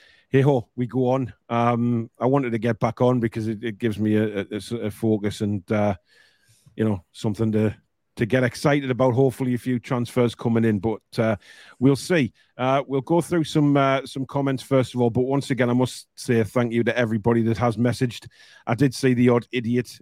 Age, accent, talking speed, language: 40-59, British, 210 wpm, English